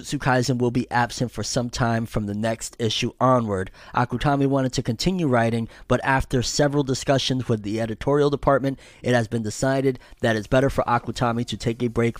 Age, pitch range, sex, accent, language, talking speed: 20-39, 110-125 Hz, male, American, English, 185 wpm